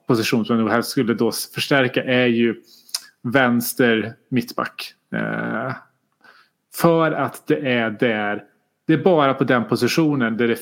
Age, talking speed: 30-49, 135 wpm